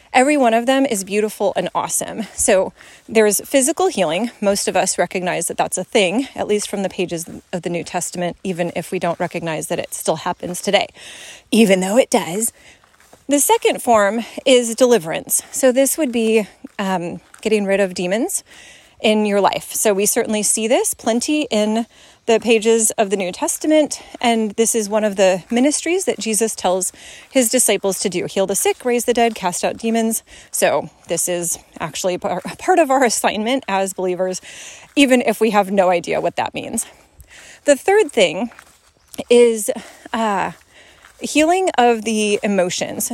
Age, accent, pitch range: 30-49, American, 195-265 Hz